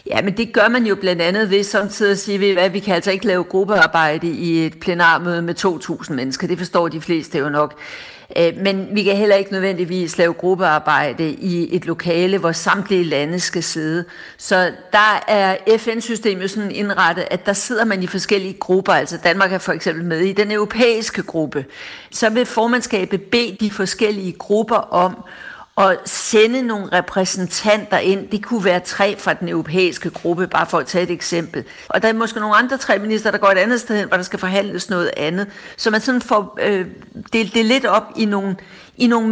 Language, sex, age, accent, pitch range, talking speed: Danish, female, 60-79, native, 180-215 Hz, 205 wpm